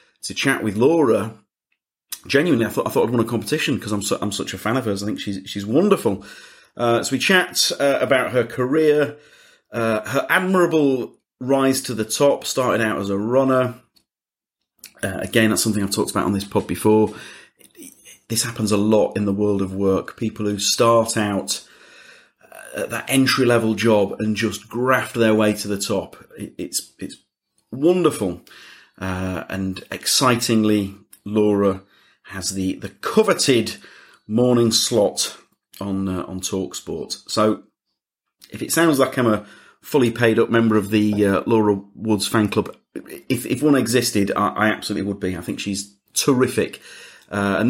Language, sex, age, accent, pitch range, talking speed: English, male, 30-49, British, 100-125 Hz, 175 wpm